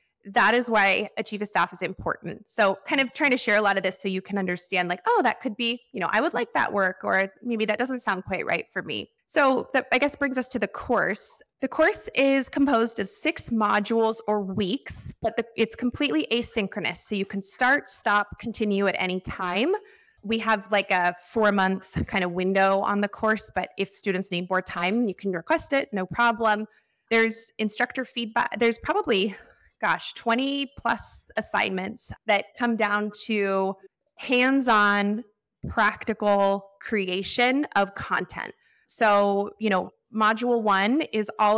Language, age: English, 20-39